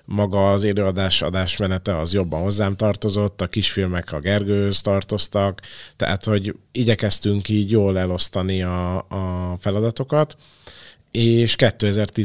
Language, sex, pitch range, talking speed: Hungarian, male, 95-110 Hz, 115 wpm